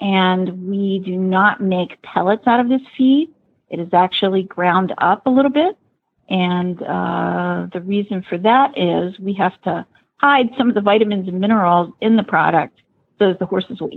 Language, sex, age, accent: English, female, 50-69, American